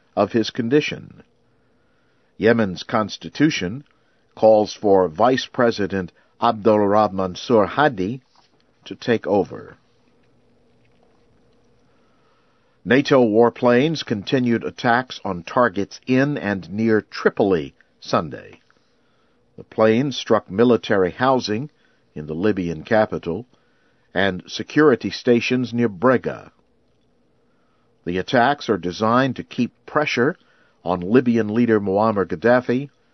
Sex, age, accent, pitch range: male, 50-69, American, 95-125 Hz